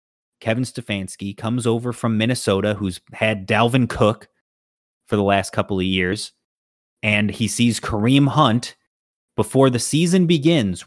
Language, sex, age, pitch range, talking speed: English, male, 30-49, 115-160 Hz, 140 wpm